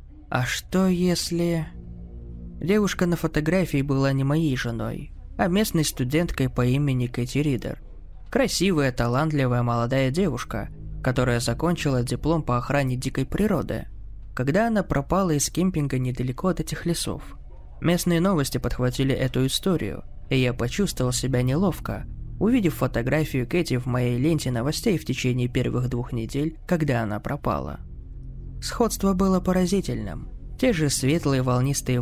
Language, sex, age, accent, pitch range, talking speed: Russian, male, 20-39, native, 120-155 Hz, 130 wpm